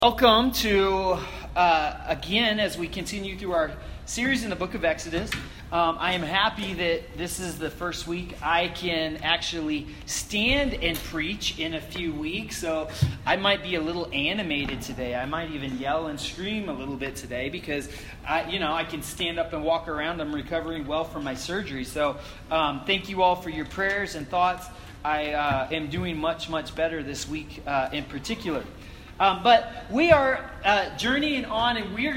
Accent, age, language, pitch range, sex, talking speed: American, 30-49, English, 165-220 Hz, male, 190 wpm